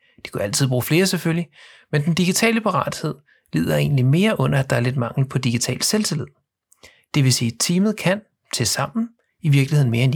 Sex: male